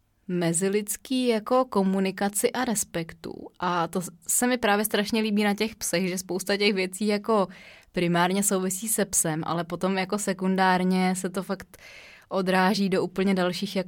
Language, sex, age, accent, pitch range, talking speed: Czech, female, 20-39, native, 175-200 Hz, 140 wpm